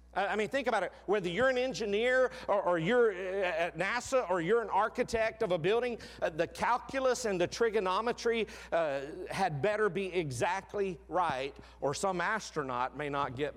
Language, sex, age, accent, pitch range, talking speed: English, male, 40-59, American, 130-205 Hz, 170 wpm